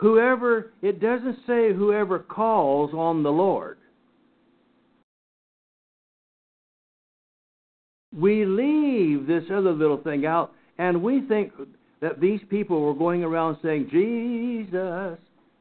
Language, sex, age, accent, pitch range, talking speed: English, male, 60-79, American, 150-230 Hz, 105 wpm